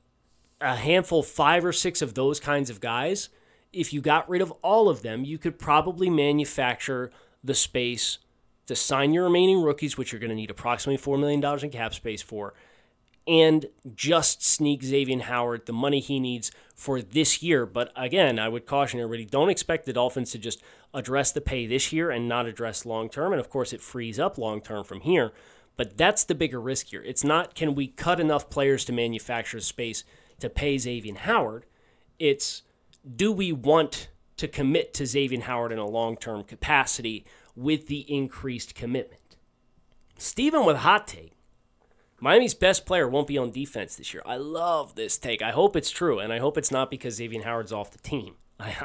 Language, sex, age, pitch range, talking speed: English, male, 30-49, 120-150 Hz, 190 wpm